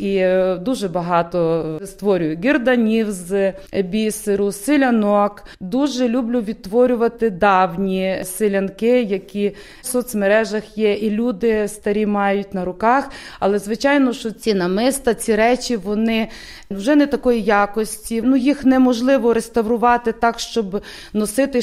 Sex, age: female, 20-39